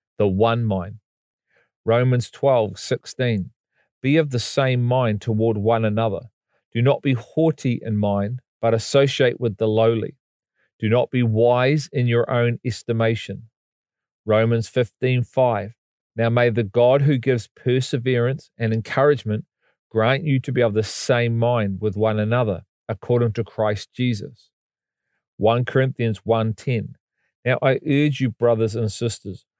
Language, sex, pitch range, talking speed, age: English, male, 115-130 Hz, 145 wpm, 40-59